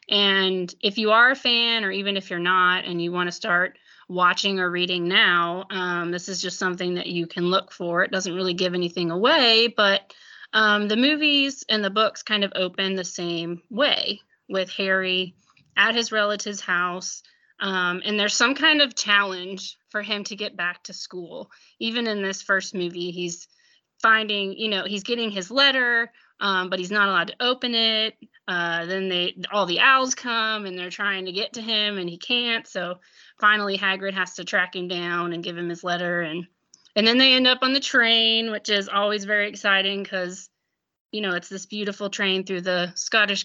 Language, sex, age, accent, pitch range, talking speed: English, female, 30-49, American, 180-220 Hz, 200 wpm